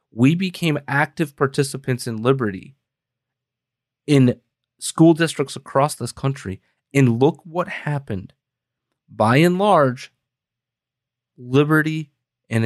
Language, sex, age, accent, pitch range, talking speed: English, male, 30-49, American, 120-140 Hz, 100 wpm